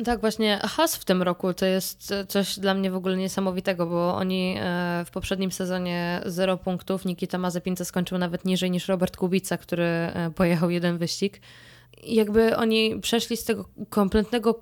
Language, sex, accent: Polish, female, native